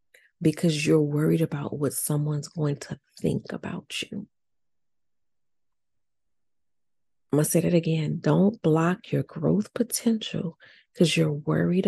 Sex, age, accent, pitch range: female, 40-59, American, 155-190 Hz